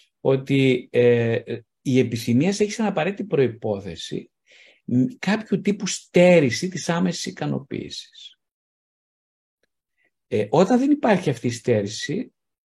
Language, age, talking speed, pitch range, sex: Greek, 50-69, 100 wpm, 120-180 Hz, male